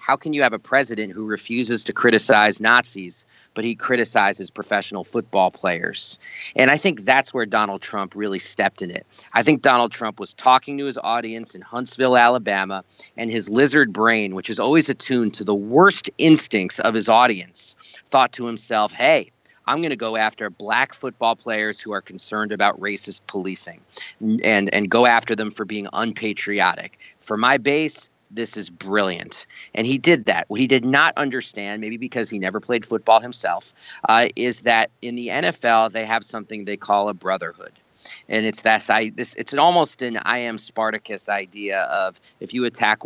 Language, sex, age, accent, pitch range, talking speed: English, male, 40-59, American, 105-125 Hz, 180 wpm